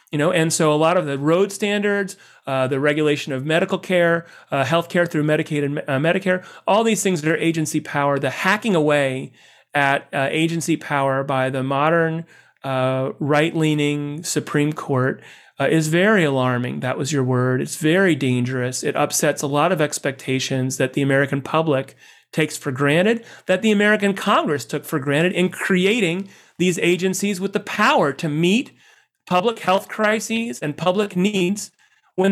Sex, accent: male, American